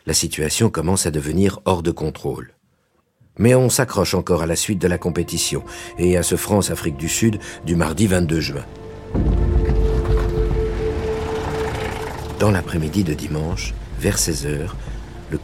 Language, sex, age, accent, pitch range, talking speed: French, male, 60-79, French, 80-105 Hz, 135 wpm